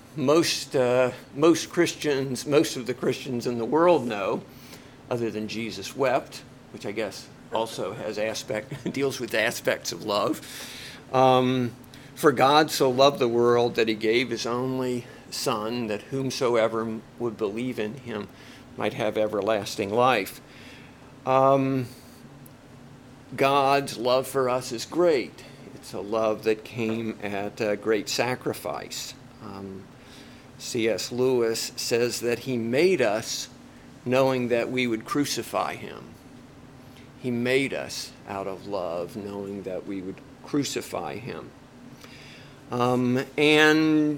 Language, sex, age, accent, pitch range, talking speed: English, male, 50-69, American, 115-135 Hz, 130 wpm